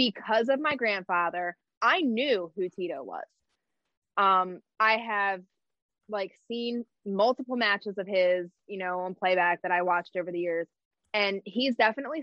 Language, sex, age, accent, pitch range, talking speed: English, female, 20-39, American, 180-225 Hz, 150 wpm